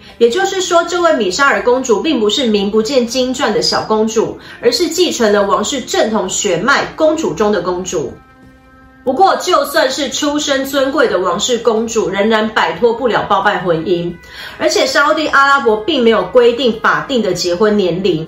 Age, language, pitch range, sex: 30-49, Chinese, 205-295 Hz, female